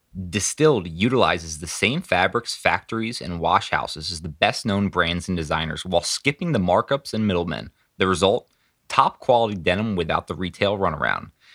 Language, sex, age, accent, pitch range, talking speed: English, male, 20-39, American, 90-120 Hz, 145 wpm